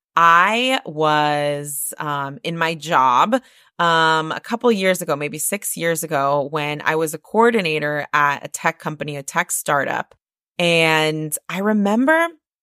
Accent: American